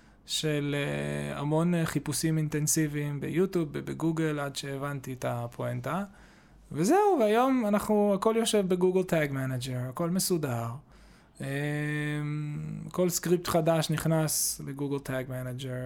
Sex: male